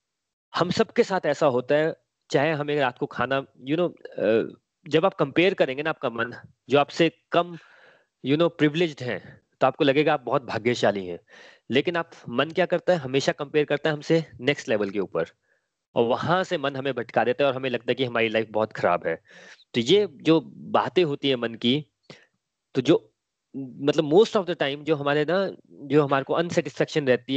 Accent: native